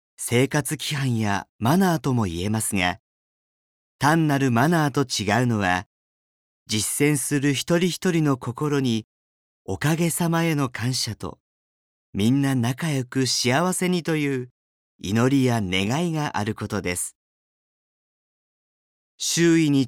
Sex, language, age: male, Japanese, 40-59